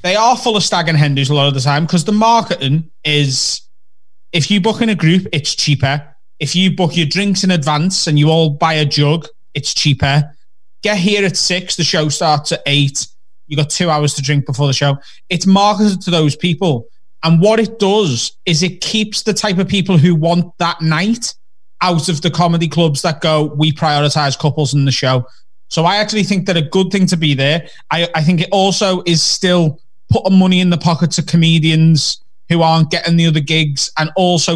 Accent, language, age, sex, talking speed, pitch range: British, English, 20-39, male, 215 wpm, 150-185 Hz